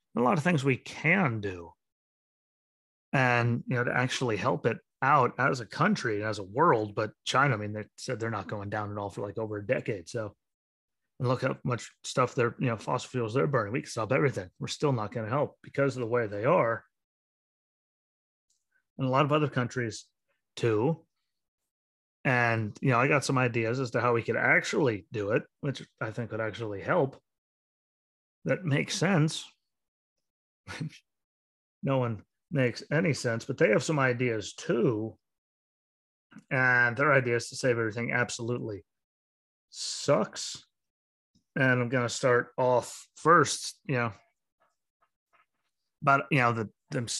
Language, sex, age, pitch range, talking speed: English, male, 30-49, 105-130 Hz, 165 wpm